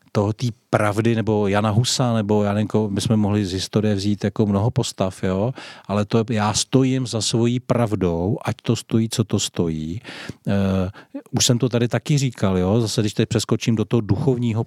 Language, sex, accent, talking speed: Czech, male, native, 190 wpm